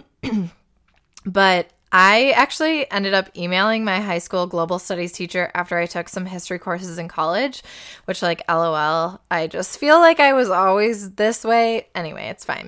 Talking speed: 165 wpm